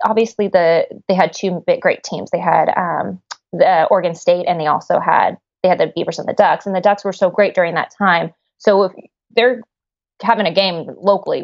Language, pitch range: English, 175-205 Hz